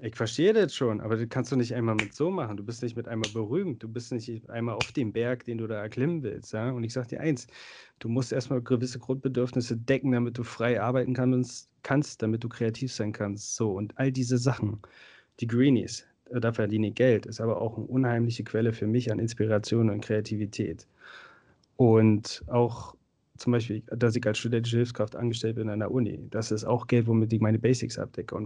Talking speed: 215 wpm